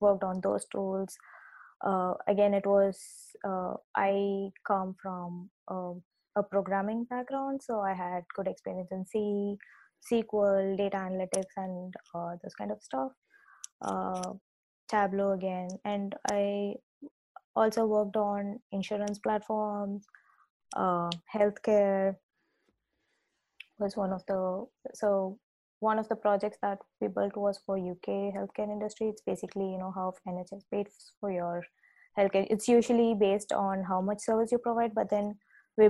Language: English